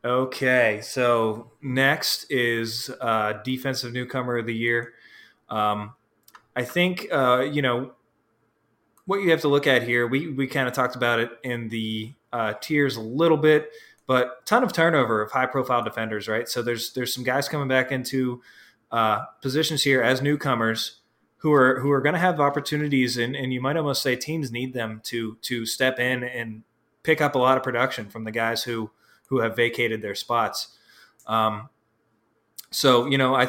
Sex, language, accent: male, English, American